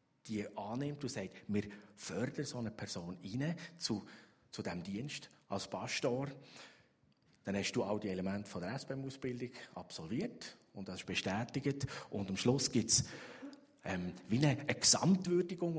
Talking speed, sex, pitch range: 150 wpm, male, 105-140 Hz